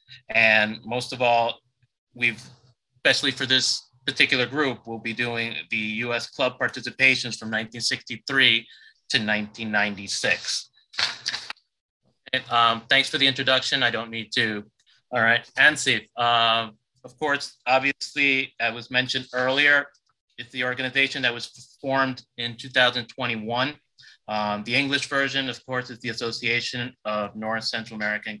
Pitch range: 110-130 Hz